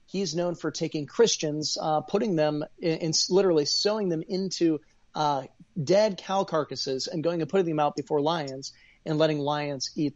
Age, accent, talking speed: 30-49, American, 170 wpm